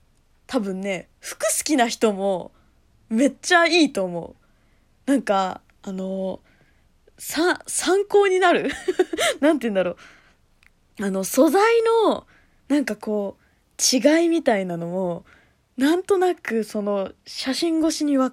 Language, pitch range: Japanese, 190-300 Hz